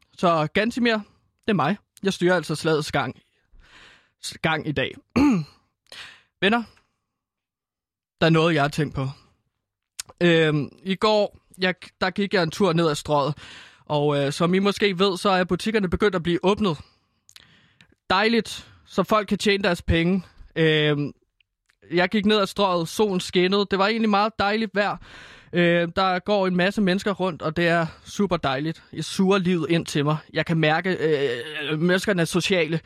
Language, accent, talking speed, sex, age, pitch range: Danish, native, 165 wpm, male, 20-39, 160-210 Hz